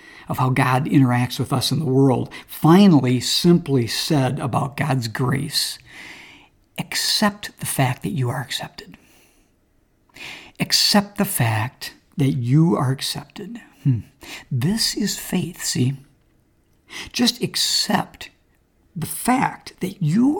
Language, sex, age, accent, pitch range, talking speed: English, male, 60-79, American, 135-185 Hz, 115 wpm